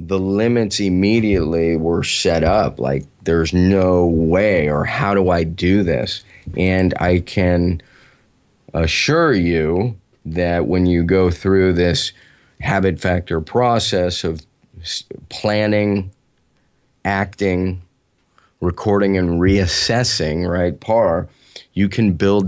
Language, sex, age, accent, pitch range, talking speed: English, male, 30-49, American, 85-100 Hz, 110 wpm